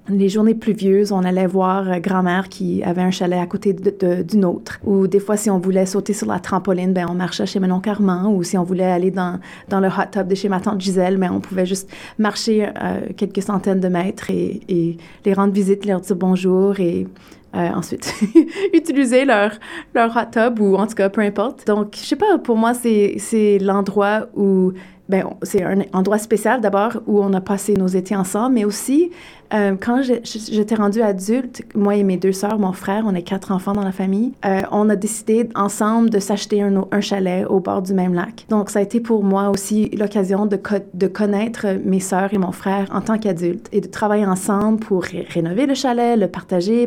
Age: 30-49